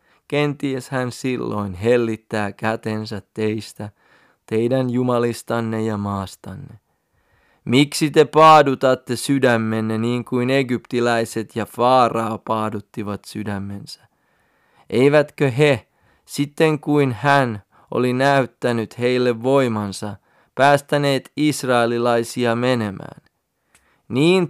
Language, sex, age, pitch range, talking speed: Finnish, male, 30-49, 115-140 Hz, 85 wpm